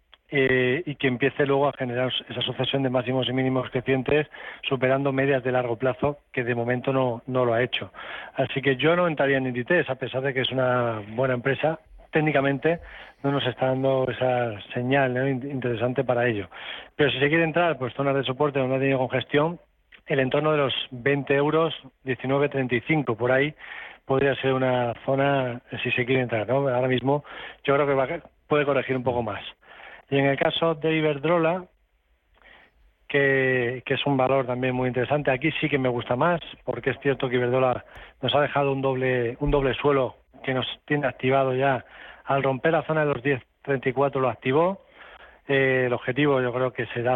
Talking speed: 190 wpm